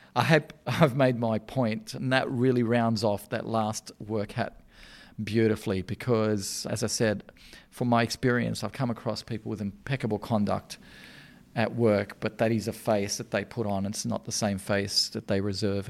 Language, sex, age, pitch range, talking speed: English, male, 40-59, 105-125 Hz, 180 wpm